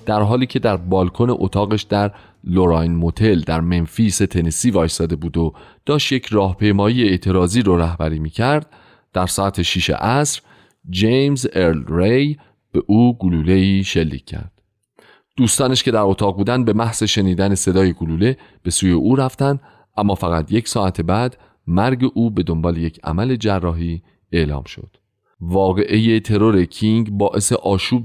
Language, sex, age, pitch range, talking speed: Persian, male, 40-59, 90-120 Hz, 145 wpm